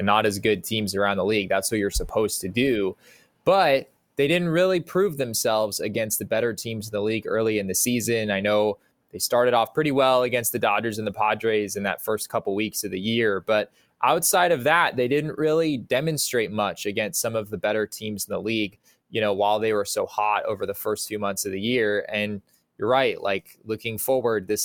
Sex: male